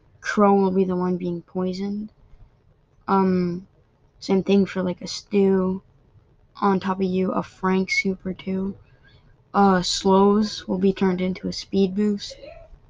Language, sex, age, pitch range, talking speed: English, female, 20-39, 175-195 Hz, 150 wpm